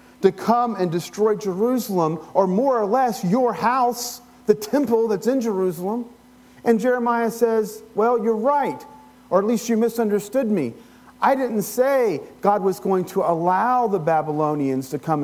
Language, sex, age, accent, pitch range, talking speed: English, male, 40-59, American, 165-235 Hz, 160 wpm